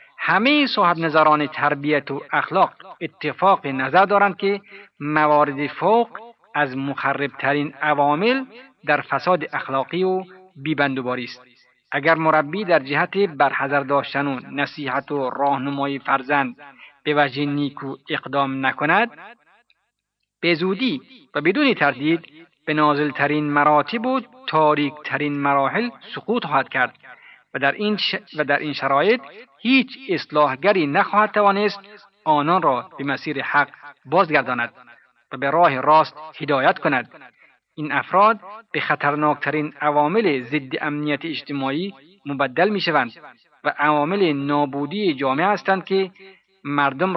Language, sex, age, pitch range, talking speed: Persian, male, 50-69, 140-190 Hz, 115 wpm